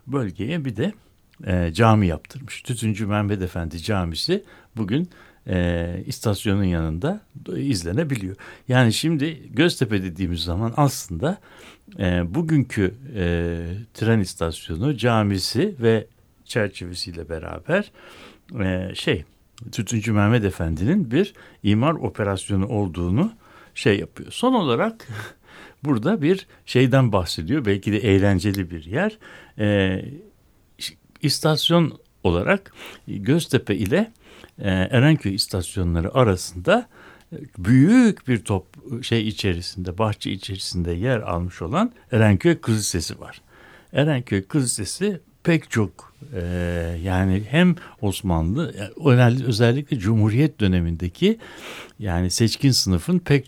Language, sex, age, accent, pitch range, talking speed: Turkish, male, 60-79, native, 95-135 Hz, 100 wpm